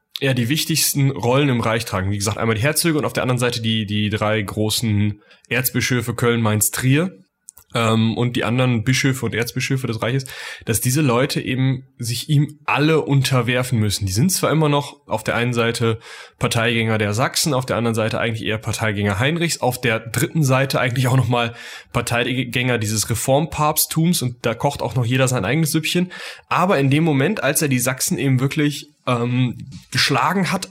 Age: 10-29